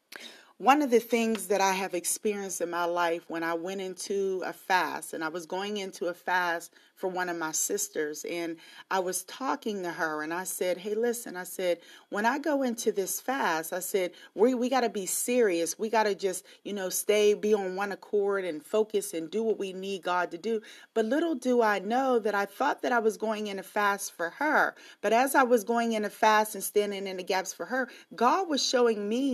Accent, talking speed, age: American, 230 wpm, 40-59